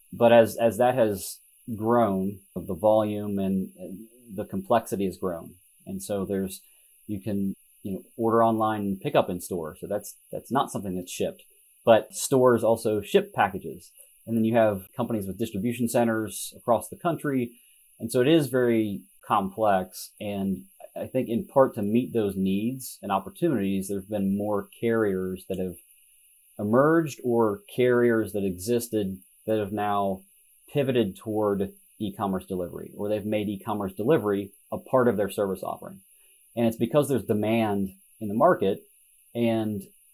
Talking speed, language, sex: 160 wpm, English, male